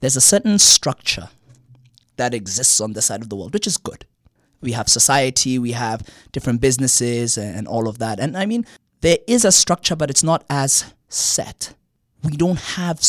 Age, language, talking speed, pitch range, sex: 20-39, English, 190 wpm, 110-140 Hz, male